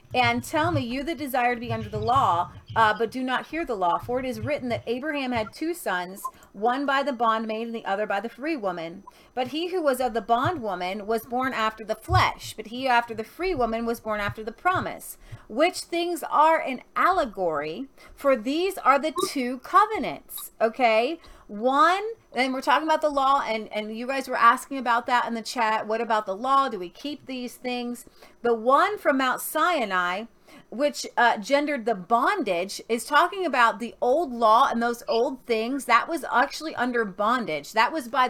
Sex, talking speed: female, 200 wpm